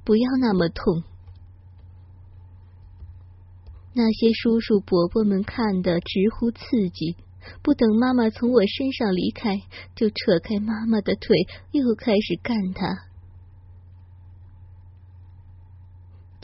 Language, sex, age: Chinese, female, 20-39